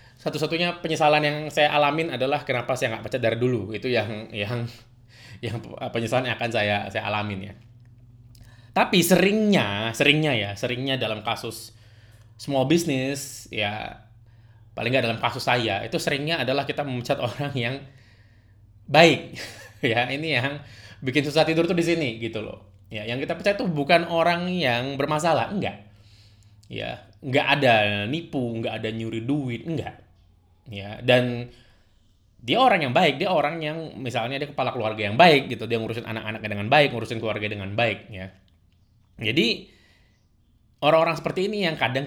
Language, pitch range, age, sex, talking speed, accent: Indonesian, 110-145 Hz, 20-39, male, 155 wpm, native